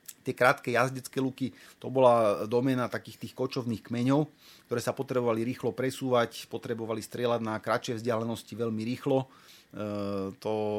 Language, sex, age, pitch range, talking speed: Slovak, male, 30-49, 110-125 Hz, 140 wpm